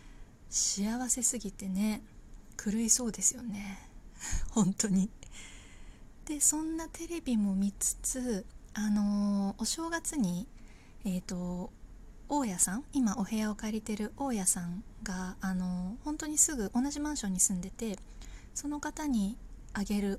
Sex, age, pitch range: female, 20-39, 195-260 Hz